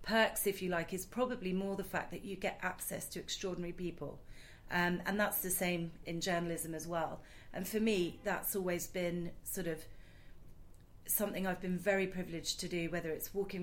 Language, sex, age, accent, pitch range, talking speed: English, female, 40-59, British, 170-200 Hz, 190 wpm